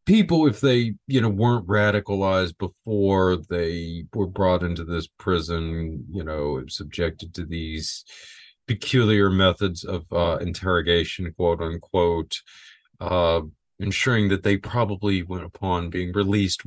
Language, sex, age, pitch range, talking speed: English, male, 40-59, 85-95 Hz, 125 wpm